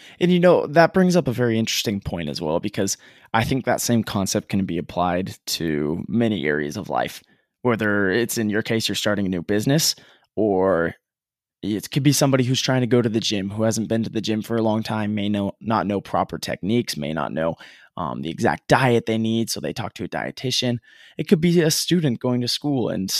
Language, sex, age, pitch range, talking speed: English, male, 20-39, 105-130 Hz, 230 wpm